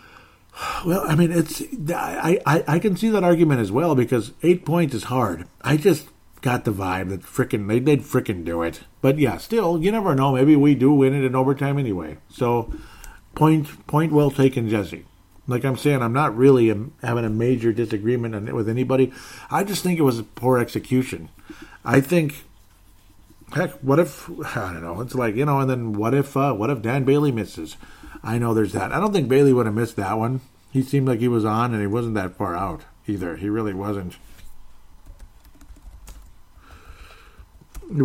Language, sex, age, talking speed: English, male, 50-69, 195 wpm